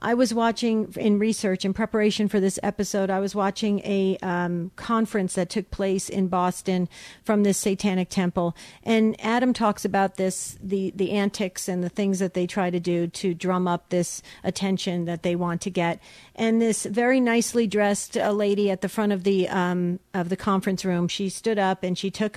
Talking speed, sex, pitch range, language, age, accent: 195 wpm, female, 185-215 Hz, English, 50-69, American